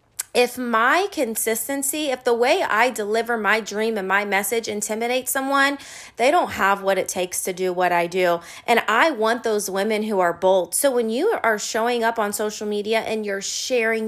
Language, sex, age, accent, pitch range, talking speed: English, female, 30-49, American, 225-310 Hz, 195 wpm